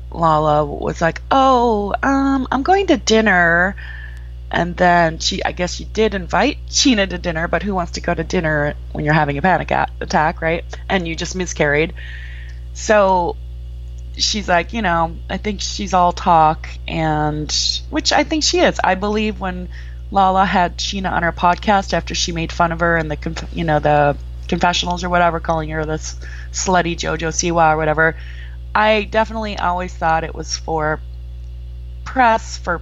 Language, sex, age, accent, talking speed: English, female, 20-39, American, 170 wpm